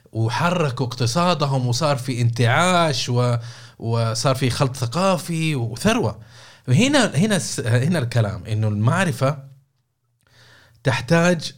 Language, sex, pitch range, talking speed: Arabic, male, 115-140 Hz, 85 wpm